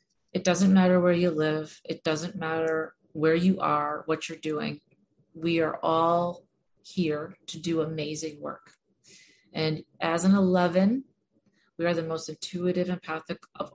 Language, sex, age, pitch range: English, female, 30-49, 155-185 Hz